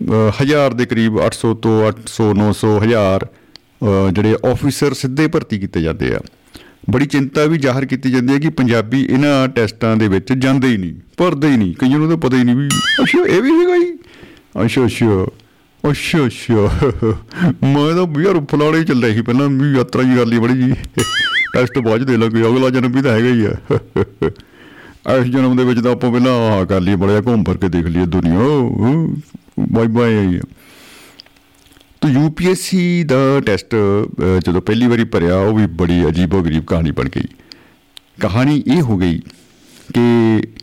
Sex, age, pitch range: male, 50-69, 105-135 Hz